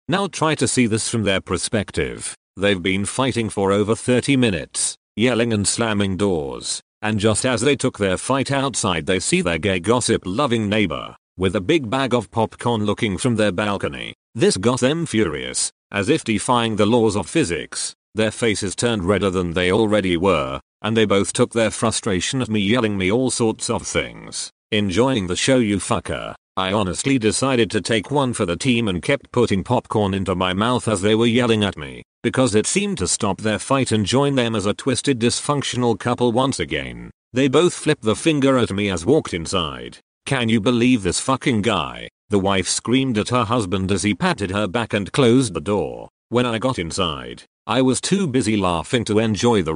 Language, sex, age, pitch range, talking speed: English, male, 40-59, 100-125 Hz, 200 wpm